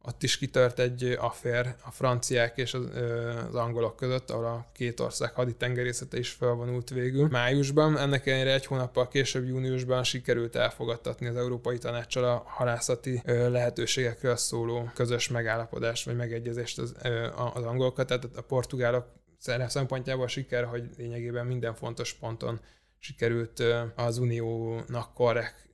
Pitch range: 115-130 Hz